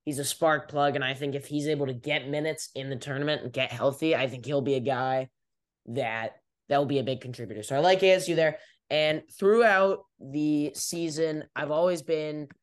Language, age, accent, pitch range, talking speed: English, 10-29, American, 140-170 Hz, 205 wpm